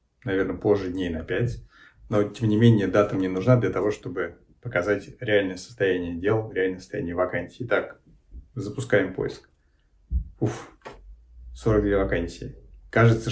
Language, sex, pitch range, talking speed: Russian, male, 95-120 Hz, 130 wpm